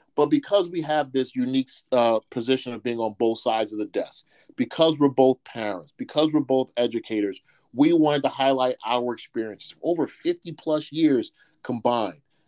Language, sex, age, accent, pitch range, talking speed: English, male, 40-59, American, 120-150 Hz, 170 wpm